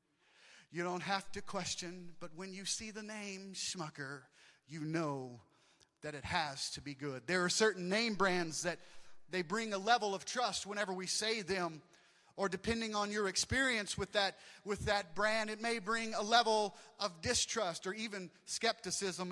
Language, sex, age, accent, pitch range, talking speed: English, male, 30-49, American, 190-245 Hz, 175 wpm